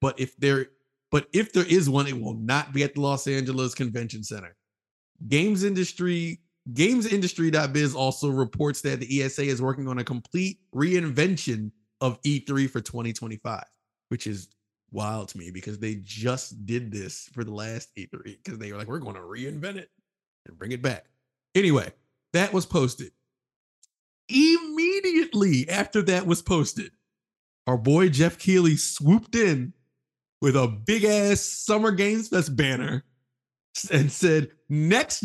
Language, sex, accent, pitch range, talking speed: English, male, American, 130-180 Hz, 150 wpm